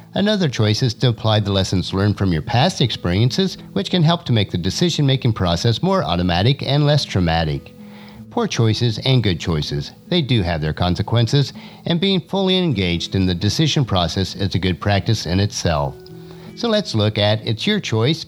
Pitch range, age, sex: 95-160 Hz, 50-69, male